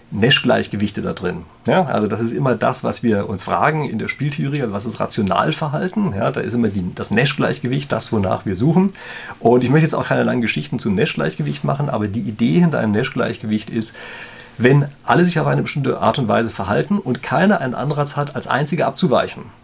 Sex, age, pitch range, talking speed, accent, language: male, 40-59, 110-145 Hz, 205 wpm, German, German